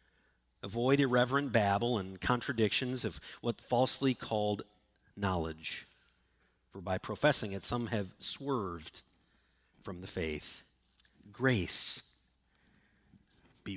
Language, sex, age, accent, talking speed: English, male, 40-59, American, 95 wpm